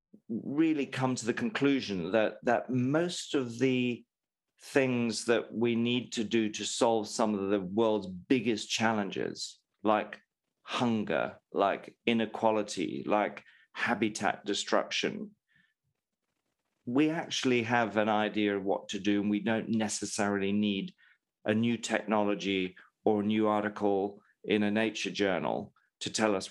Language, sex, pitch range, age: English, male, 105-120 Hz, 40-59